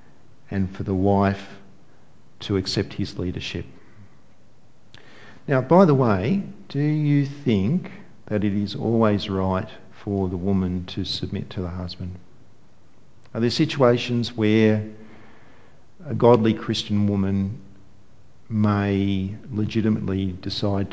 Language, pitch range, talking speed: English, 95-115 Hz, 110 wpm